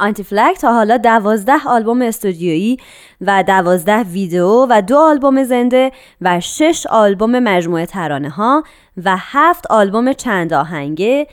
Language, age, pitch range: Persian, 20-39, 180-260 Hz